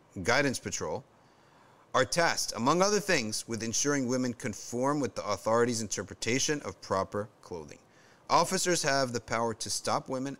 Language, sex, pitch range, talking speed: English, male, 105-150 Hz, 145 wpm